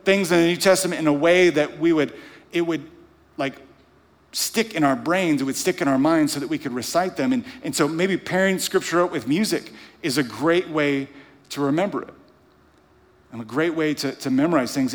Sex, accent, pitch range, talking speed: male, American, 120-170 Hz, 215 wpm